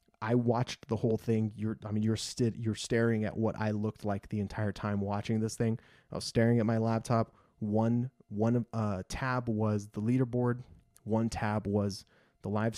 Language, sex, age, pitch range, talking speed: English, male, 20-39, 105-120 Hz, 195 wpm